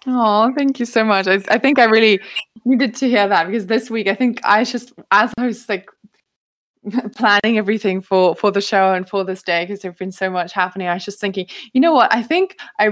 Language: English